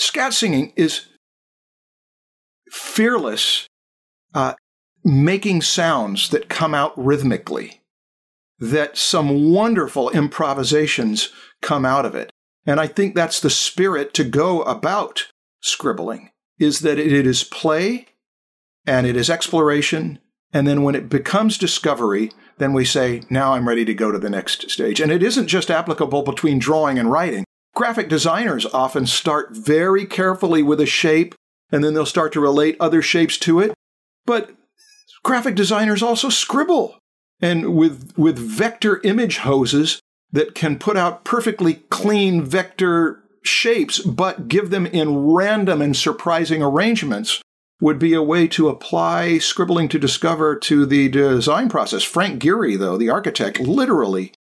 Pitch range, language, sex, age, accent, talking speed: 145-200 Hz, English, male, 50-69, American, 145 wpm